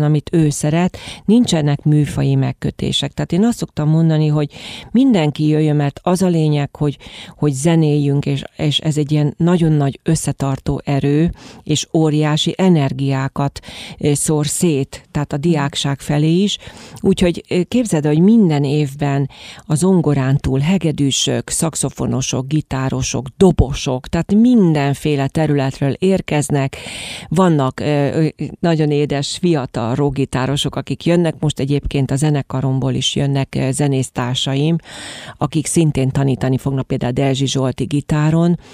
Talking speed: 120 wpm